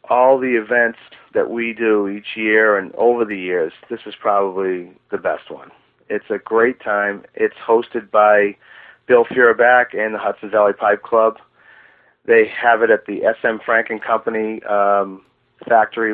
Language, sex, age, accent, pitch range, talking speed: English, male, 40-59, American, 100-115 Hz, 160 wpm